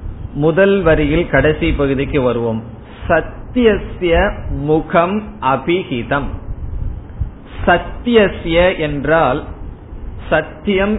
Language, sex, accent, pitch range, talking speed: Tamil, male, native, 135-175 Hz, 60 wpm